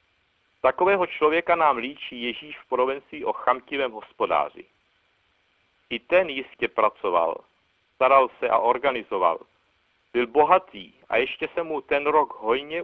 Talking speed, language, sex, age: 125 wpm, Czech, male, 60-79